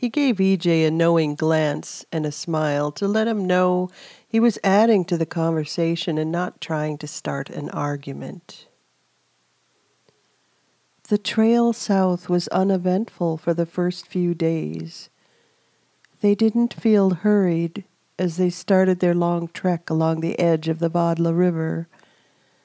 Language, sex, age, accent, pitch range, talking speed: English, female, 50-69, American, 160-195 Hz, 140 wpm